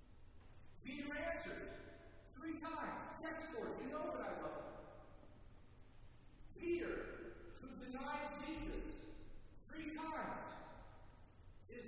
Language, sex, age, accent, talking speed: English, male, 50-69, American, 100 wpm